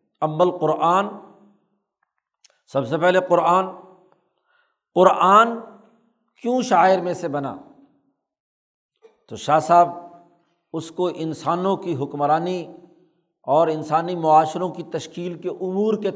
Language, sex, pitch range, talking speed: Urdu, male, 165-215 Hz, 105 wpm